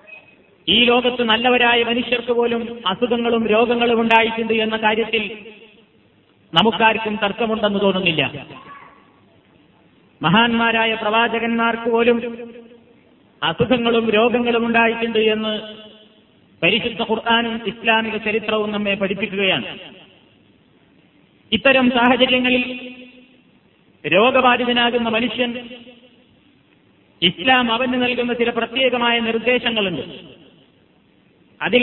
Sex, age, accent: male, 30-49, native